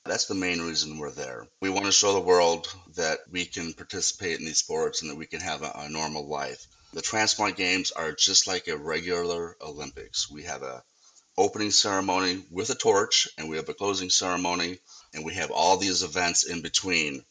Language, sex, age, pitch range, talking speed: English, male, 30-49, 90-105 Hz, 205 wpm